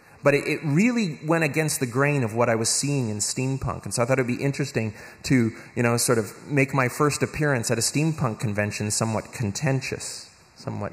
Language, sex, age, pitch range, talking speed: Swedish, male, 30-49, 110-140 Hz, 210 wpm